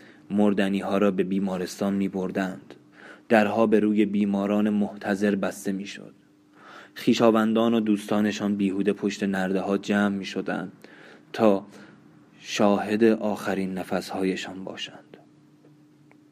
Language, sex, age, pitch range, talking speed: Persian, male, 20-39, 100-115 Hz, 105 wpm